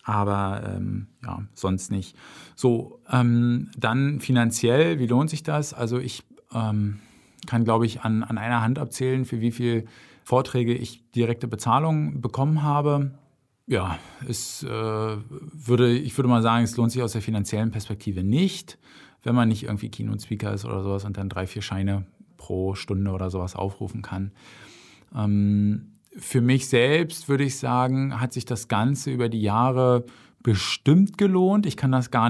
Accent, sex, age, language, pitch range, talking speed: German, male, 40-59, German, 110-135 Hz, 165 wpm